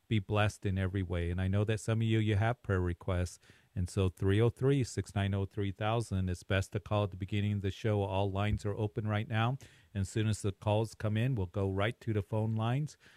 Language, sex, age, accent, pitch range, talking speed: English, male, 40-59, American, 95-110 Hz, 230 wpm